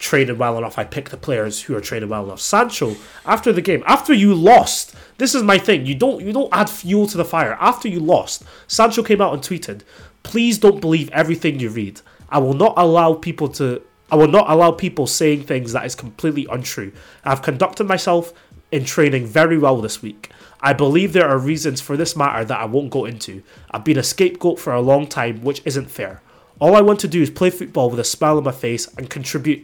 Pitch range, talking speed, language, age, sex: 125-175 Hz, 225 wpm, English, 20-39, male